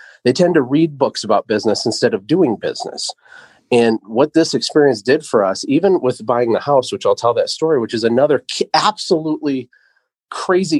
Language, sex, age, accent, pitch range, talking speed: English, male, 30-49, American, 120-185 Hz, 185 wpm